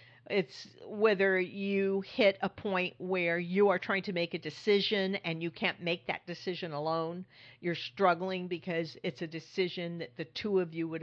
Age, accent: 50-69, American